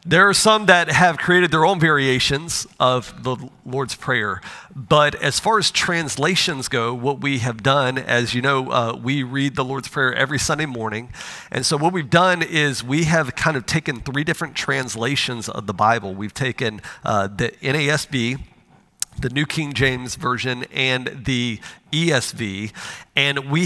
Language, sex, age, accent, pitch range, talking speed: English, male, 40-59, American, 120-150 Hz, 170 wpm